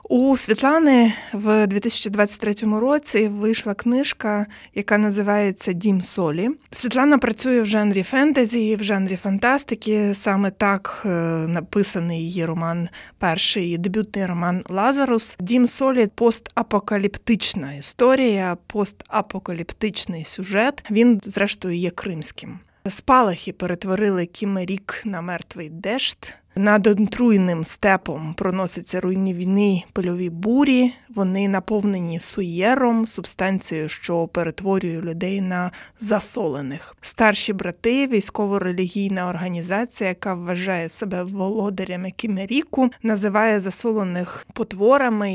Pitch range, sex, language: 185-220 Hz, female, Ukrainian